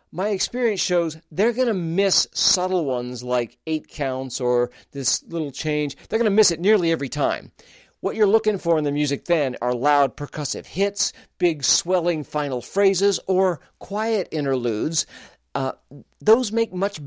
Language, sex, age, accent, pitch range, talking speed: English, male, 50-69, American, 135-195 Hz, 165 wpm